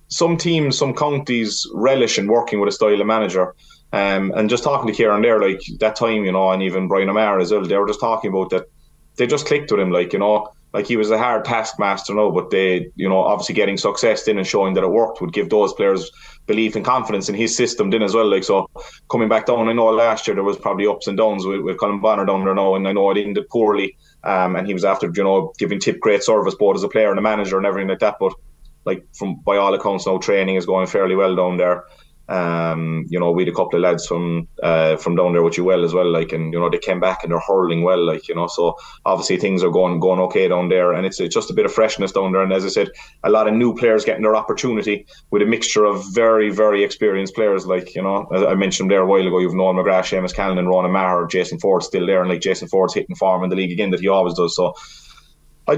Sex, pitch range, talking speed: male, 90-110 Hz, 270 wpm